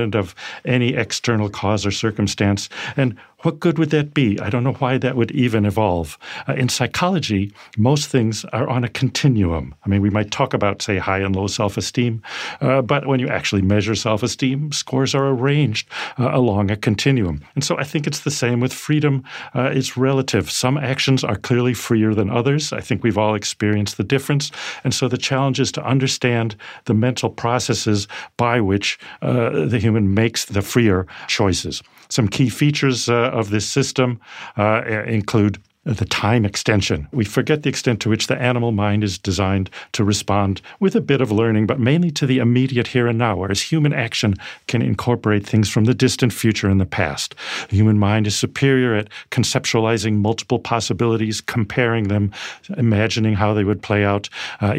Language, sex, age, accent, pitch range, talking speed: English, male, 50-69, American, 105-130 Hz, 185 wpm